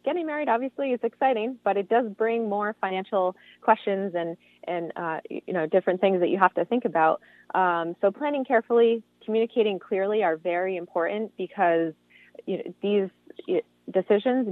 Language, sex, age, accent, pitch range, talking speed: English, female, 20-39, American, 175-230 Hz, 160 wpm